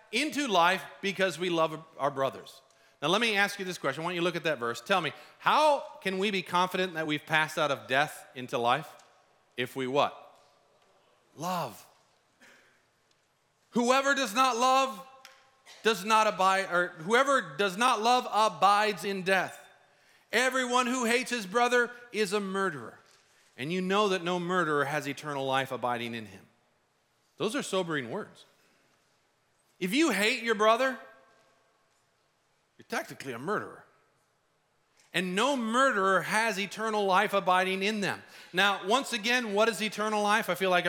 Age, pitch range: 40-59, 175-240 Hz